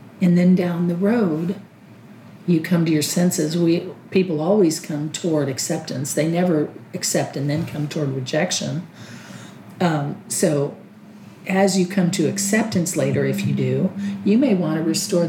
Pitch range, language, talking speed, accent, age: 155-200 Hz, English, 155 wpm, American, 50-69